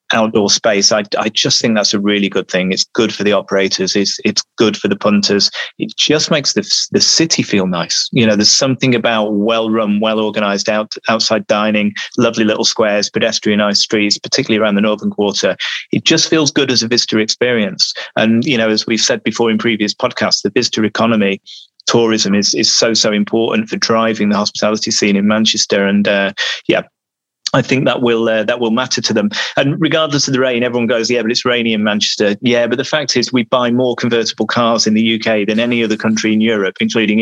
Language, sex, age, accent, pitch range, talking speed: English, male, 30-49, British, 105-120 Hz, 210 wpm